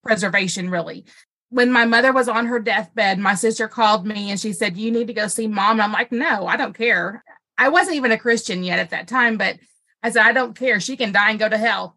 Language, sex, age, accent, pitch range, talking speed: English, female, 30-49, American, 210-245 Hz, 255 wpm